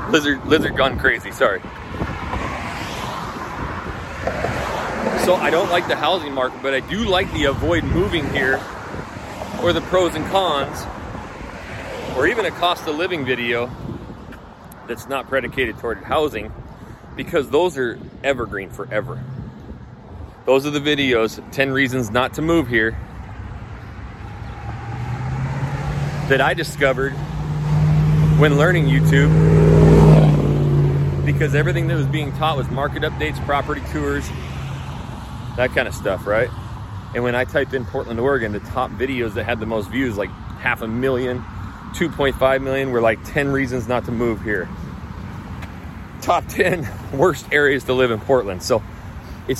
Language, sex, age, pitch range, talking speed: English, male, 30-49, 105-140 Hz, 135 wpm